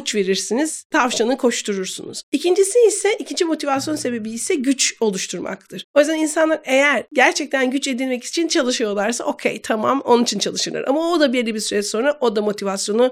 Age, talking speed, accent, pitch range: 50-69, 160 wpm, native, 240-320 Hz